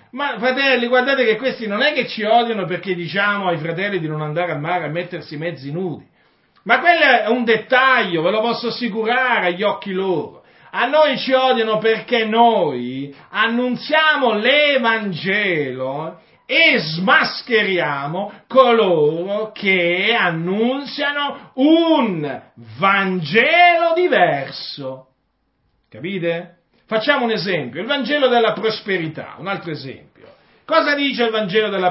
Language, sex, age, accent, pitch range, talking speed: Italian, male, 40-59, native, 180-250 Hz, 125 wpm